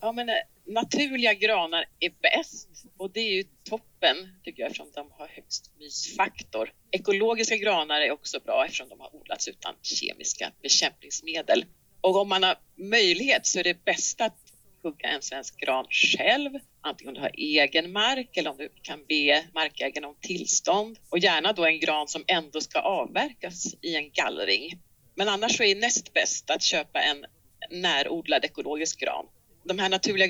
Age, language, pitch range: 40-59, Swedish, 160-200 Hz